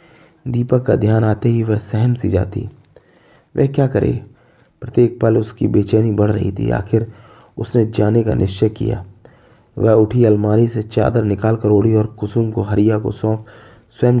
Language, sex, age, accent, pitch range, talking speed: Hindi, male, 20-39, native, 105-125 Hz, 170 wpm